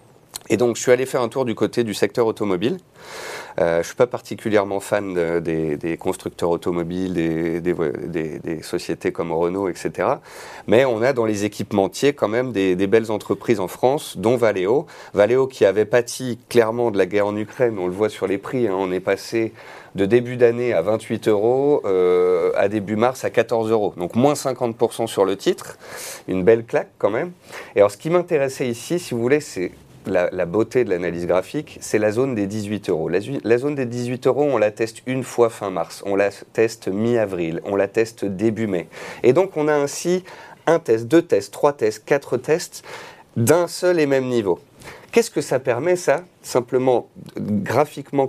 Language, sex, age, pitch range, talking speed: French, male, 30-49, 100-135 Hz, 200 wpm